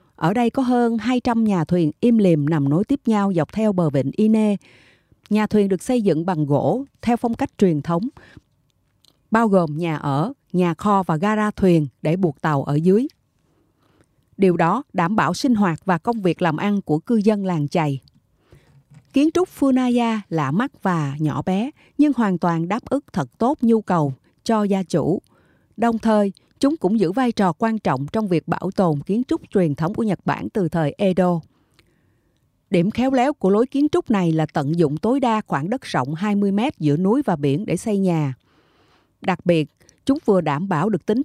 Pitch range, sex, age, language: 165-225 Hz, female, 30-49, Japanese